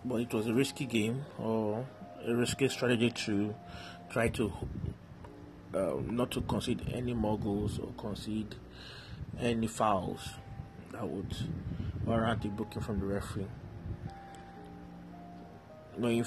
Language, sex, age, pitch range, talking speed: English, male, 30-49, 100-120 Hz, 120 wpm